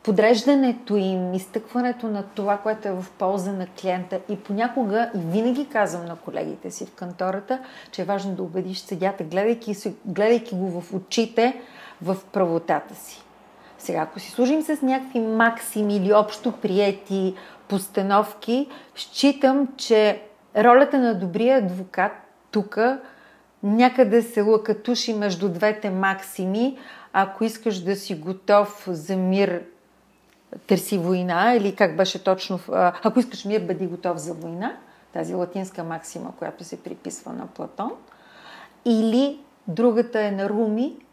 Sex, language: female, Bulgarian